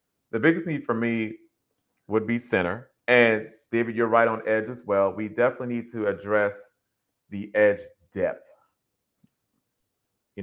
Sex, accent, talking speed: male, American, 145 wpm